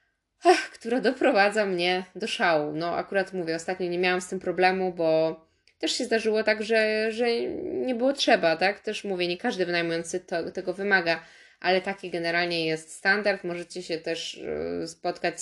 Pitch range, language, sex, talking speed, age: 165-190 Hz, Polish, female, 160 wpm, 20-39